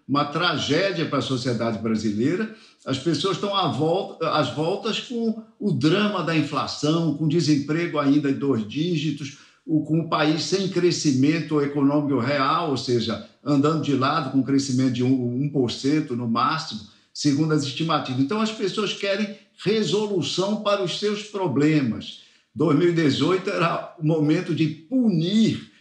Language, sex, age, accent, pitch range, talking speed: Portuguese, male, 60-79, Brazilian, 145-185 Hz, 145 wpm